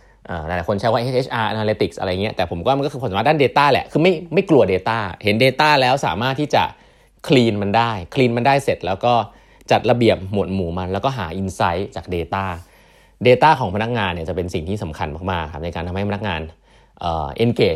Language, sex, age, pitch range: Thai, male, 20-39, 95-130 Hz